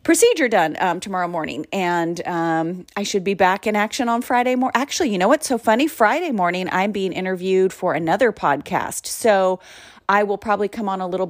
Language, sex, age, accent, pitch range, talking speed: English, female, 30-49, American, 175-225 Hz, 200 wpm